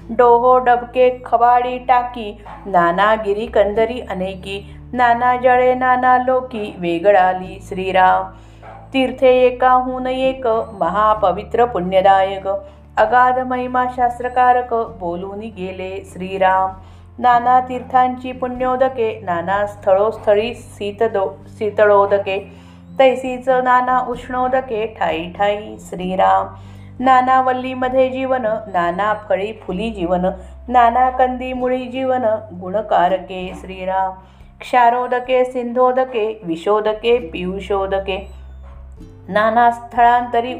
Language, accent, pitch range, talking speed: Marathi, native, 190-250 Hz, 85 wpm